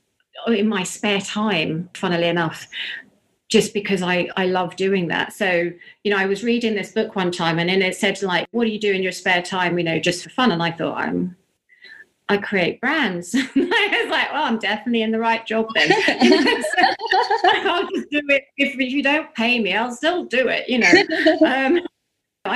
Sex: female